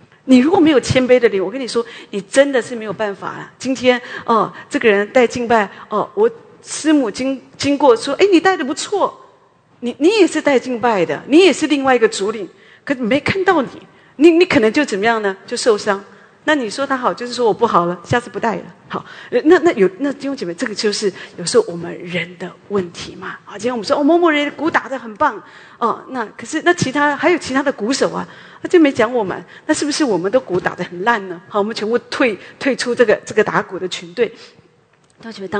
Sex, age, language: female, 40-59, English